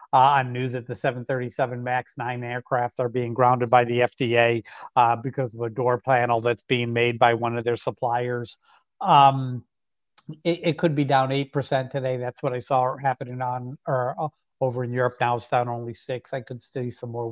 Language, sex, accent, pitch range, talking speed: English, male, American, 125-145 Hz, 200 wpm